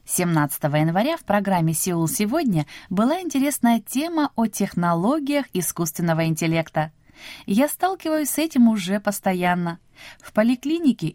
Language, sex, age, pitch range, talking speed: Russian, female, 20-39, 165-245 Hz, 115 wpm